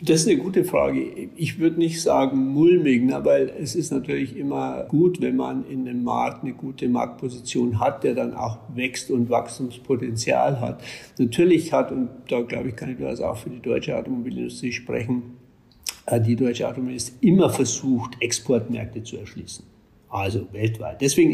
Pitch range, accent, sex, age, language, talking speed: 120-135 Hz, German, male, 50-69, German, 160 wpm